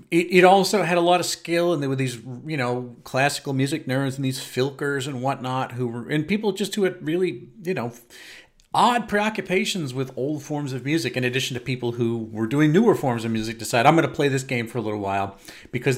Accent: American